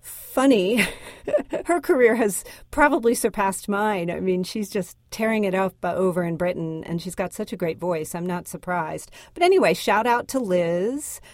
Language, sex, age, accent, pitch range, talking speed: English, female, 40-59, American, 175-220 Hz, 180 wpm